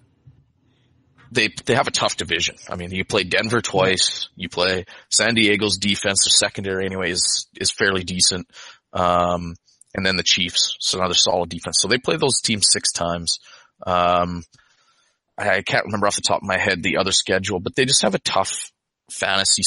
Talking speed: 185 wpm